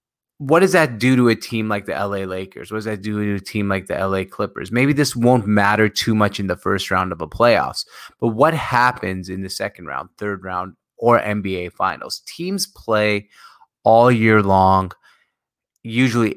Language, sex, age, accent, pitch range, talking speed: English, male, 20-39, American, 95-115 Hz, 195 wpm